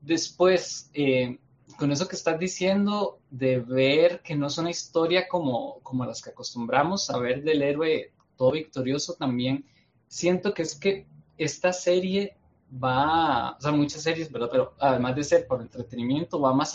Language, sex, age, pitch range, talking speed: Spanish, male, 20-39, 130-175 Hz, 165 wpm